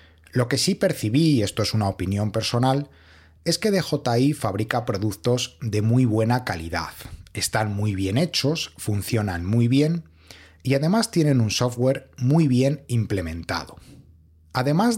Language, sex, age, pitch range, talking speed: Spanish, male, 30-49, 105-140 Hz, 140 wpm